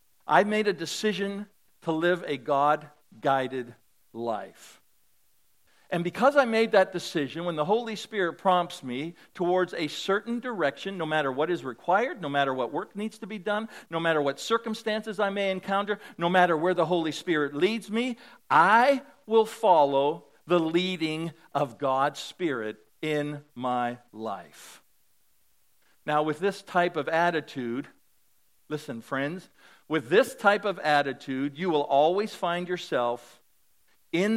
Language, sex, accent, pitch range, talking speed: English, male, American, 145-200 Hz, 145 wpm